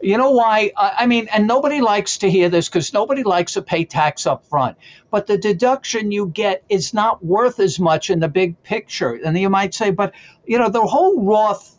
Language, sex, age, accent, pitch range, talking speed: English, male, 60-79, American, 165-215 Hz, 220 wpm